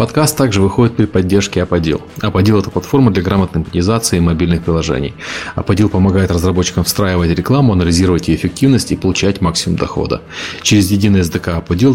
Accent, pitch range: native, 90-110 Hz